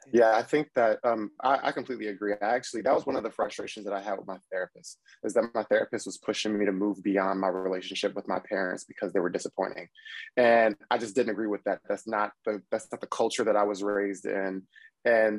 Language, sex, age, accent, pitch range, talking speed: English, male, 20-39, American, 100-110 Hz, 240 wpm